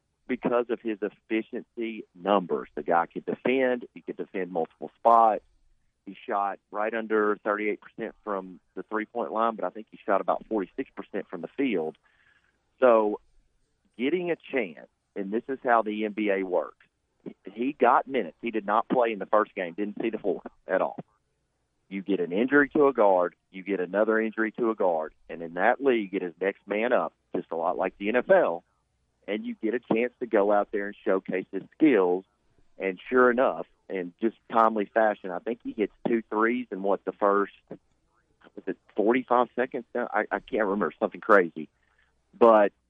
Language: English